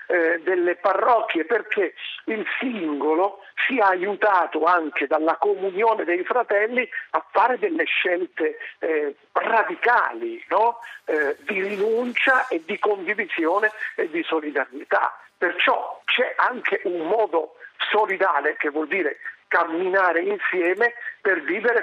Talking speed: 115 wpm